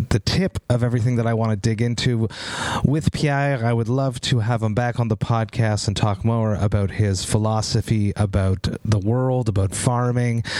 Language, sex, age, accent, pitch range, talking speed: English, male, 30-49, American, 110-130 Hz, 185 wpm